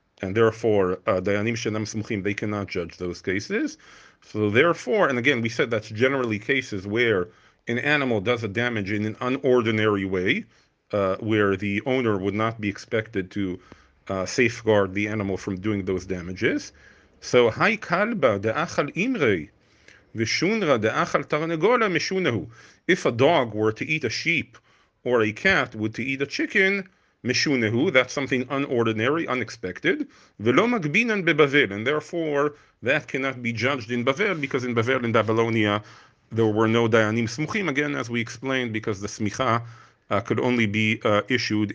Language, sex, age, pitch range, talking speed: English, male, 40-59, 105-135 Hz, 135 wpm